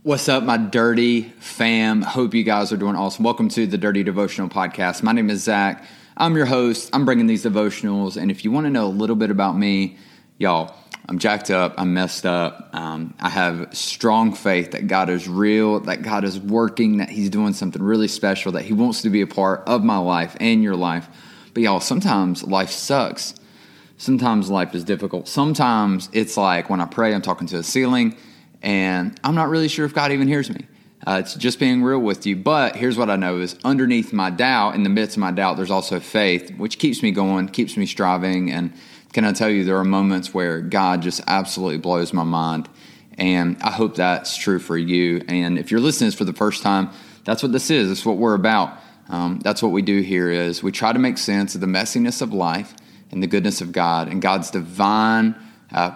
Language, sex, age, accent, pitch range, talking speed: English, male, 20-39, American, 90-115 Hz, 220 wpm